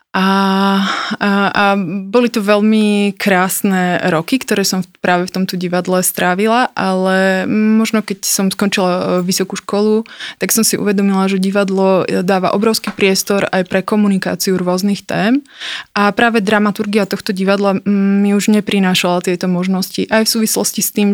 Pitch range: 185-210 Hz